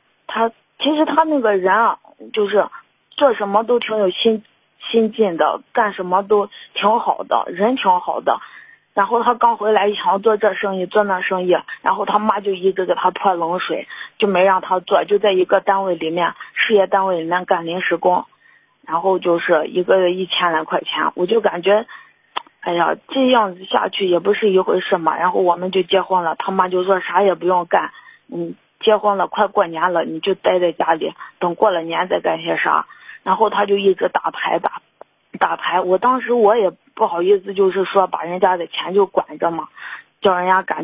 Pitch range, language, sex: 180-215 Hz, Chinese, female